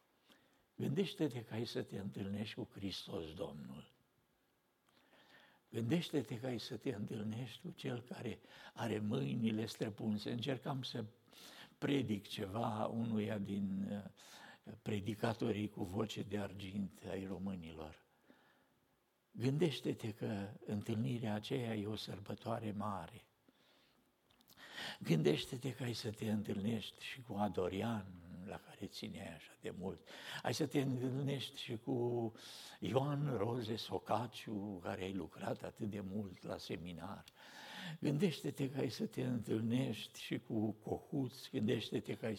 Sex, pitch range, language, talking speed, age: male, 105-130 Hz, Romanian, 120 wpm, 60-79